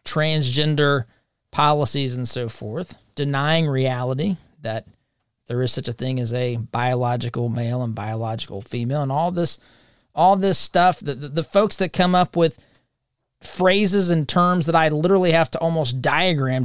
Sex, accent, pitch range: male, American, 125-170 Hz